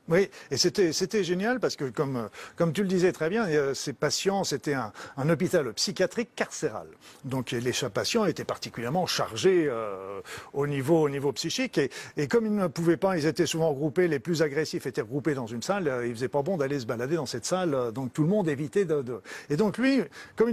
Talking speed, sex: 225 wpm, male